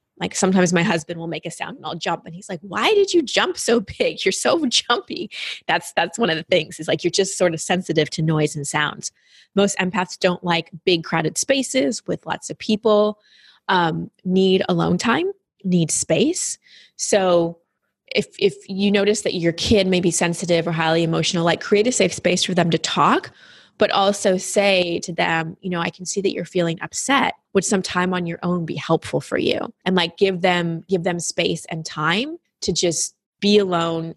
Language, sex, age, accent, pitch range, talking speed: English, female, 20-39, American, 165-200 Hz, 205 wpm